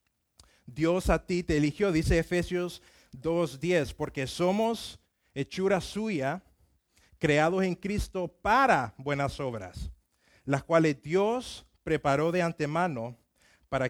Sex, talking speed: male, 110 wpm